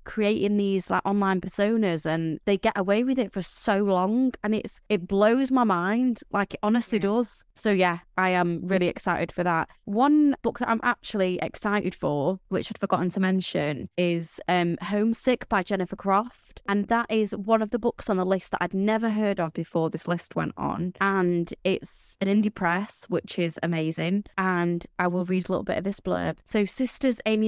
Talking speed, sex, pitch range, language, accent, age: 200 wpm, female, 175-210 Hz, English, British, 20-39